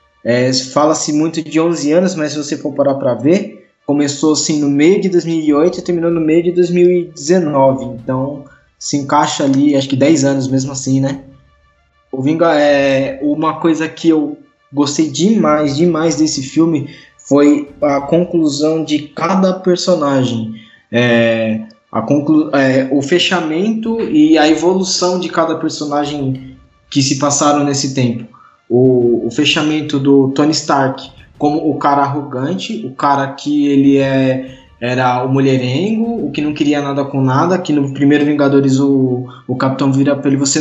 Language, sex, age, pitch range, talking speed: Portuguese, male, 20-39, 140-165 Hz, 145 wpm